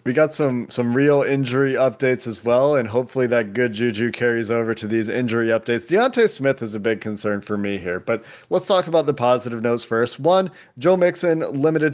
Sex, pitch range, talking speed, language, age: male, 115-135 Hz, 205 wpm, English, 30-49